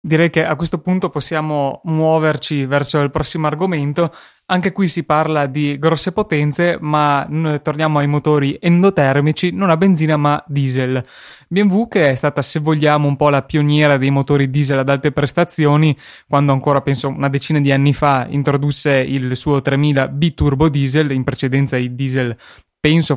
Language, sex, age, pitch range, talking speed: Italian, male, 20-39, 140-170 Hz, 165 wpm